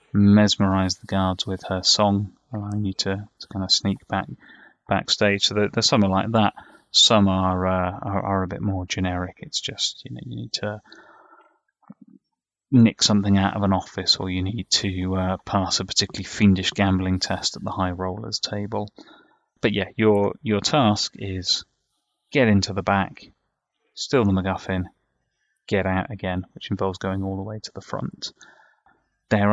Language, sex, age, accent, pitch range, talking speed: English, male, 20-39, British, 95-105 Hz, 175 wpm